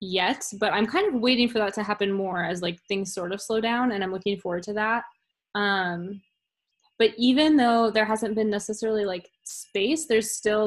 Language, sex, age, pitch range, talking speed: English, female, 10-29, 185-220 Hz, 200 wpm